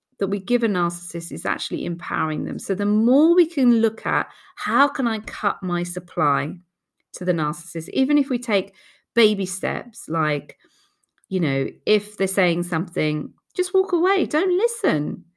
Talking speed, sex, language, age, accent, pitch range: 170 wpm, female, English, 40-59, British, 180-280 Hz